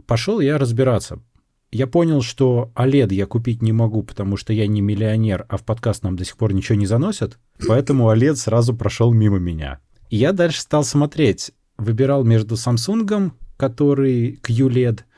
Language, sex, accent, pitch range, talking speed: Russian, male, native, 105-130 Hz, 160 wpm